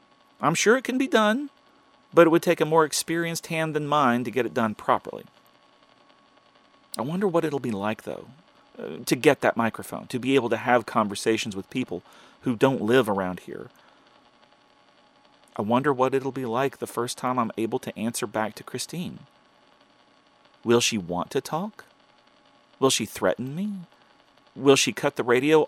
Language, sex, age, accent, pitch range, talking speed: English, male, 40-59, American, 125-215 Hz, 175 wpm